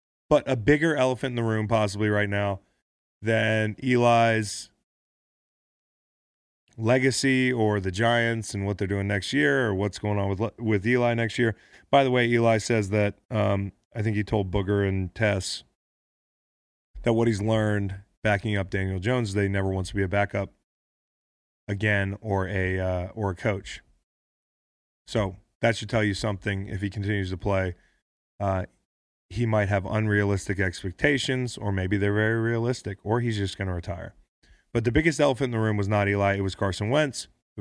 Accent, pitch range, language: American, 100-115 Hz, English